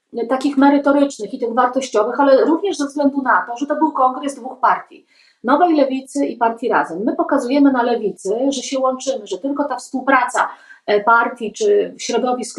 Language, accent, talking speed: Polish, native, 170 wpm